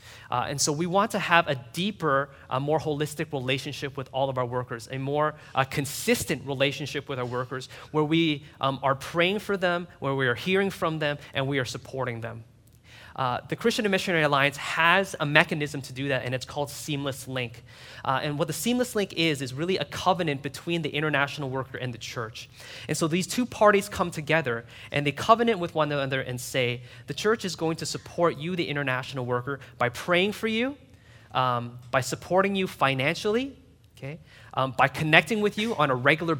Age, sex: 20-39, male